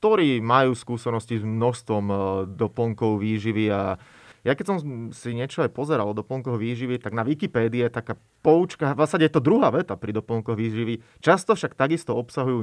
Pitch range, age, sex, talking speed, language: 105-125 Hz, 30-49, male, 170 wpm, Slovak